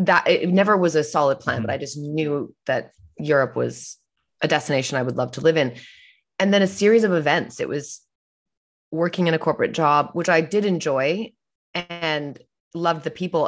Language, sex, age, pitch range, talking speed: English, female, 20-39, 145-175 Hz, 190 wpm